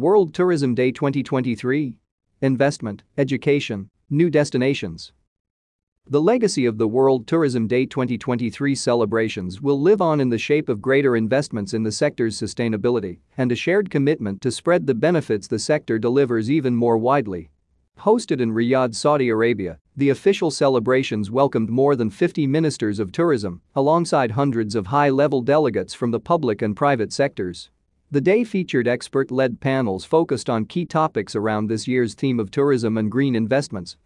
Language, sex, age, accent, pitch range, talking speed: English, male, 40-59, American, 115-145 Hz, 155 wpm